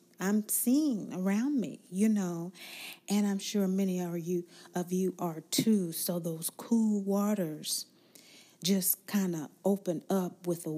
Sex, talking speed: female, 140 wpm